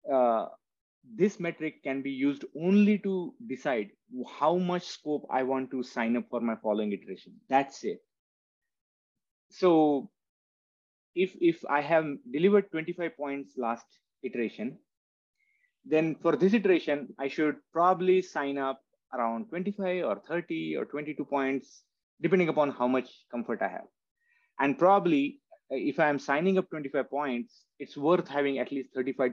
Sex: male